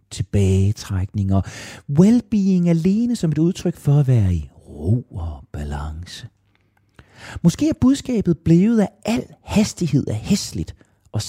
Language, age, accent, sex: Danish, 40-59, native, male